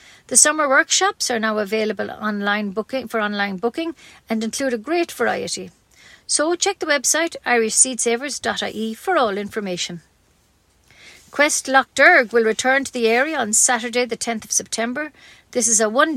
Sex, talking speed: female, 155 wpm